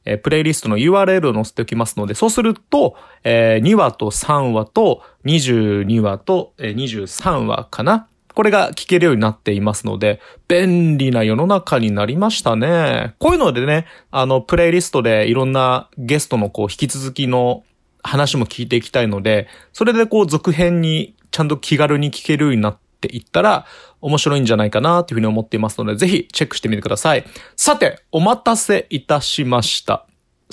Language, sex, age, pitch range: Japanese, male, 30-49, 115-180 Hz